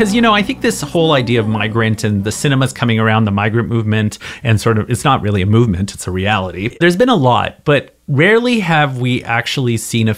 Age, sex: 30-49, male